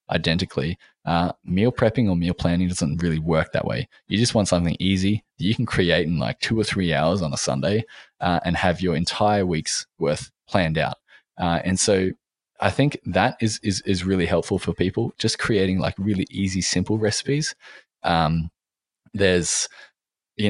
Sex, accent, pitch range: male, Australian, 85-110 Hz